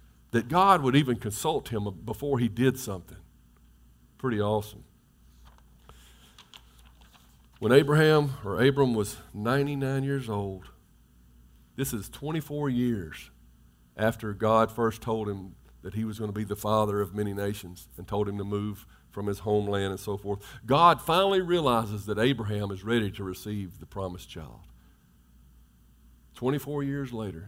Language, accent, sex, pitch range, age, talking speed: English, American, male, 85-125 Hz, 50-69, 145 wpm